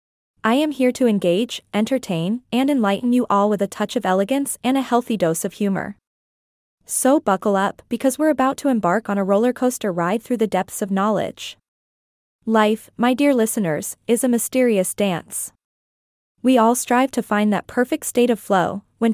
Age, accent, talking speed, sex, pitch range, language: 20-39, American, 180 wpm, female, 200-250 Hz, English